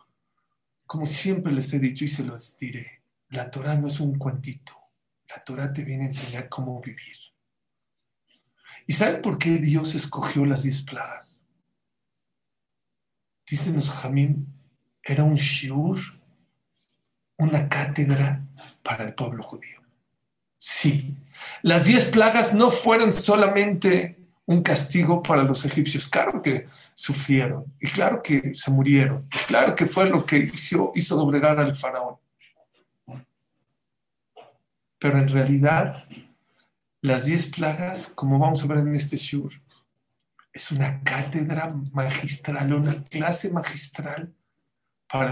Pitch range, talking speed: 135-160 Hz, 125 wpm